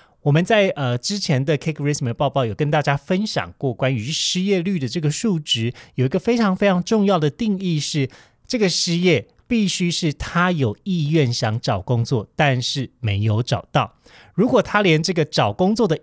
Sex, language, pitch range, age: male, Chinese, 125-170 Hz, 30-49